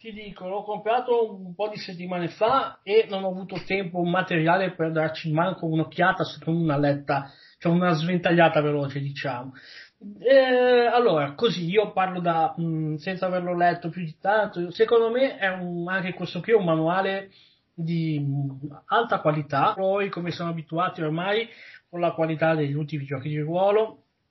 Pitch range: 150-190 Hz